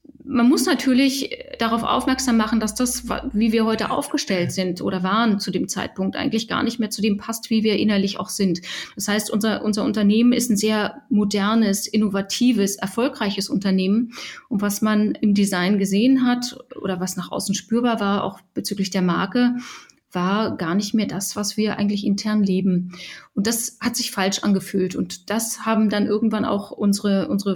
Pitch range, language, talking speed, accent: 205-245 Hz, German, 180 wpm, German